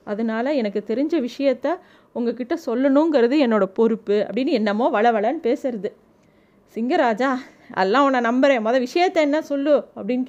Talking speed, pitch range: 120 wpm, 215-265 Hz